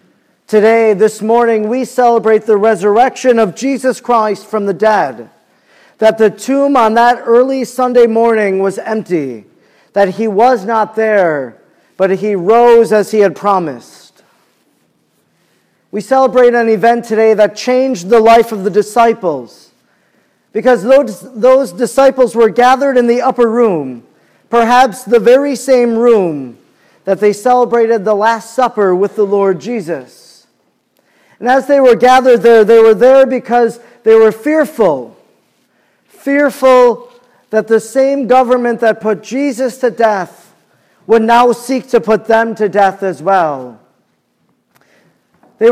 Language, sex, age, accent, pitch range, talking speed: English, male, 40-59, American, 215-250 Hz, 140 wpm